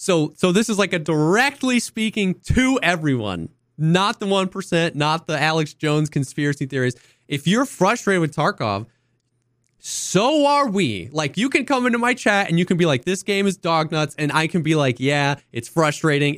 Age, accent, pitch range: 20-39, American, 130-190 Hz